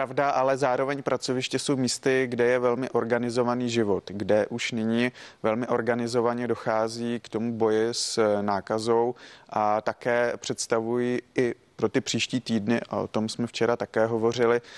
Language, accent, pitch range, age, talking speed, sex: Czech, native, 110-125 Hz, 30-49, 150 wpm, male